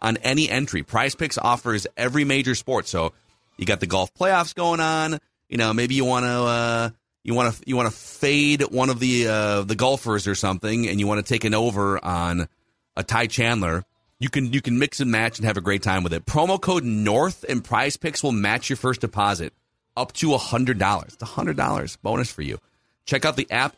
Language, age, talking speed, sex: English, 30-49, 225 wpm, male